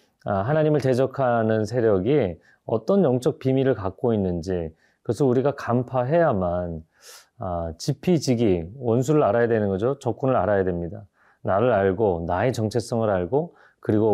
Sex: male